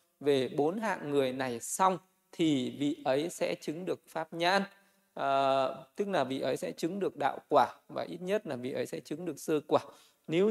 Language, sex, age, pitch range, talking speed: Vietnamese, male, 20-39, 140-180 Hz, 205 wpm